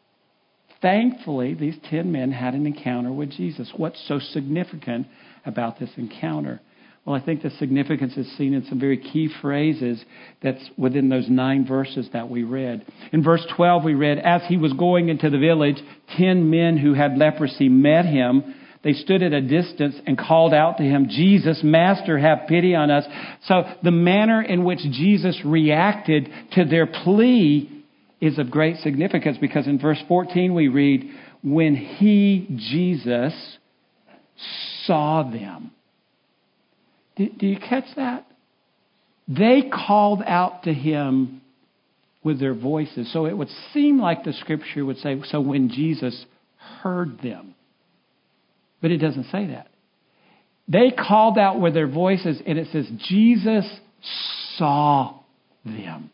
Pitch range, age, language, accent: 140-185 Hz, 50-69, English, American